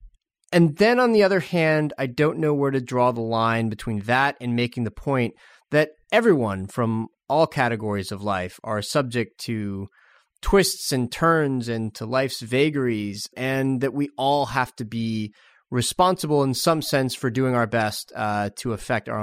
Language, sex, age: English, male, 30-49